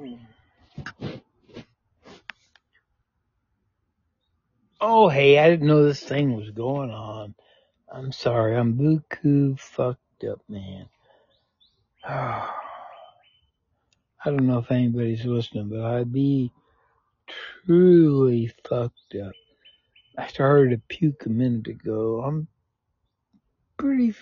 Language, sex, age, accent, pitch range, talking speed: English, male, 60-79, American, 115-140 Hz, 95 wpm